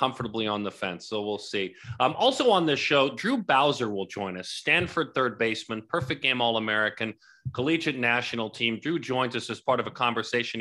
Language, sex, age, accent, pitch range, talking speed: English, male, 40-59, American, 105-130 Hz, 190 wpm